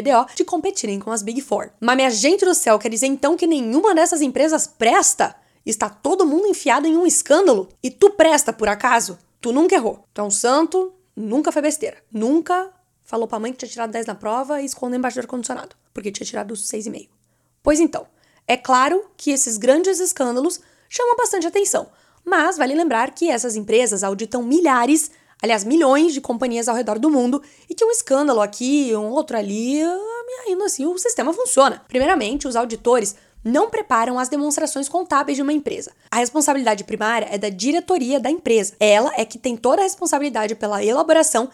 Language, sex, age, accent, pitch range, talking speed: Portuguese, female, 10-29, Brazilian, 230-315 Hz, 190 wpm